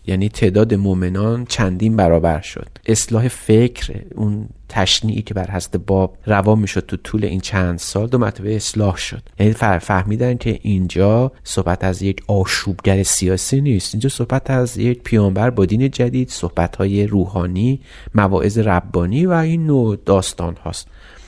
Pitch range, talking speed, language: 95-115 Hz, 145 wpm, Persian